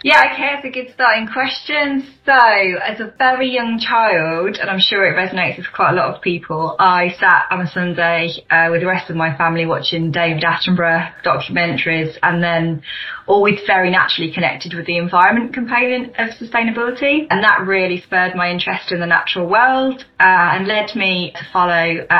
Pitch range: 180-220 Hz